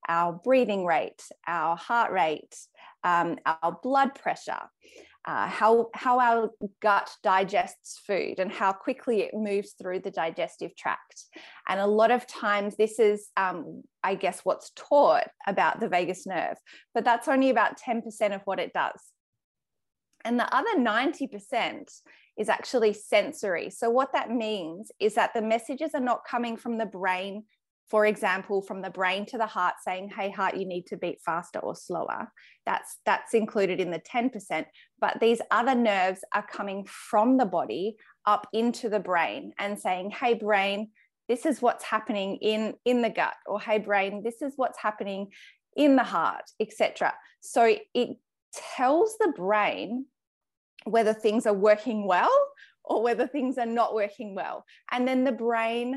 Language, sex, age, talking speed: English, female, 20-39, 165 wpm